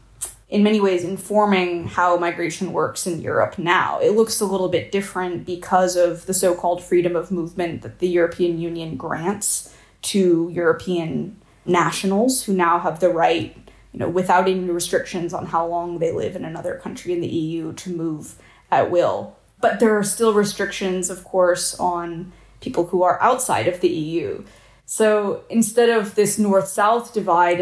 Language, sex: English, female